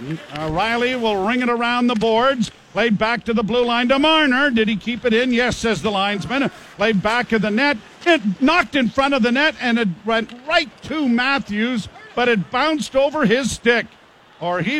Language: English